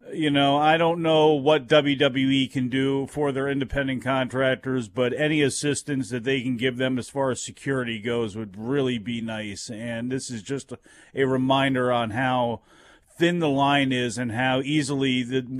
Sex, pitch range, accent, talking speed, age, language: male, 125-150 Hz, American, 175 wpm, 40-59, English